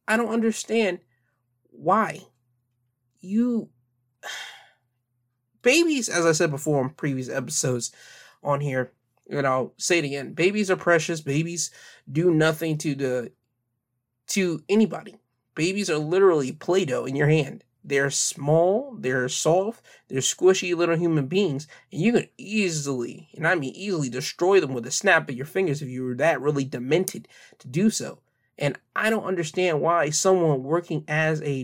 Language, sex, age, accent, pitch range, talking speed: English, male, 20-39, American, 130-175 Hz, 150 wpm